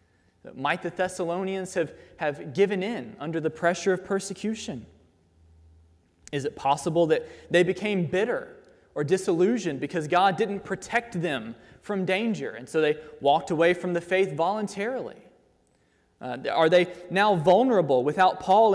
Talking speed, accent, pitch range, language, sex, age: 140 wpm, American, 155-210 Hz, English, male, 20-39